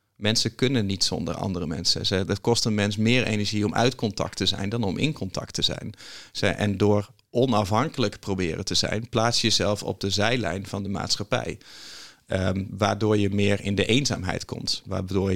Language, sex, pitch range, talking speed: Dutch, male, 100-115 Hz, 180 wpm